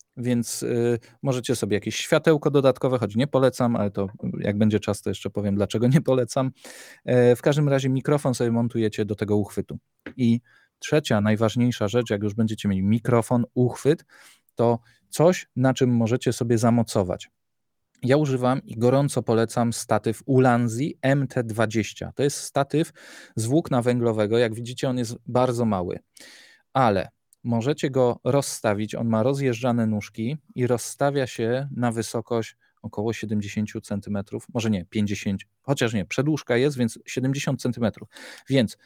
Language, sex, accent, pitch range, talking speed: Polish, male, native, 110-130 Hz, 145 wpm